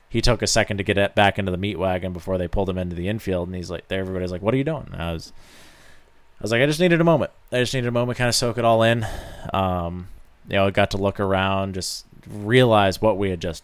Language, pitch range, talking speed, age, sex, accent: English, 85-100 Hz, 285 wpm, 20-39, male, American